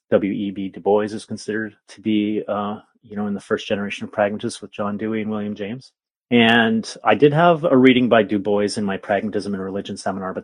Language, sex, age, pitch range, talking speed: English, male, 30-49, 100-110 Hz, 230 wpm